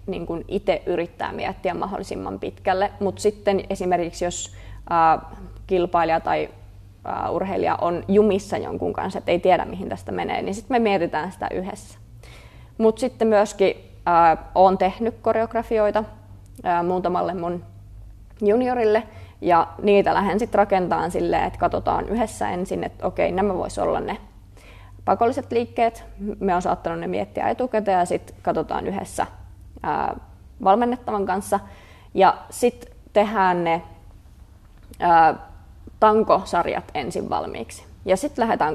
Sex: female